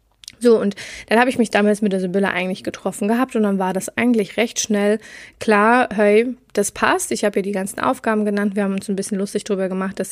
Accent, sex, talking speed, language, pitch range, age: German, female, 235 wpm, German, 195-230 Hz, 20-39